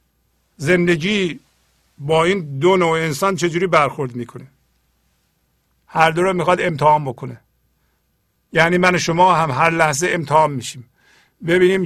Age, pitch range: 50-69, 115-175 Hz